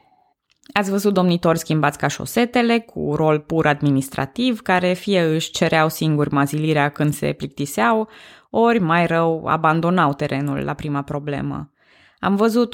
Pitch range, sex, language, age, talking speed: 155-210 Hz, female, Romanian, 20-39, 135 wpm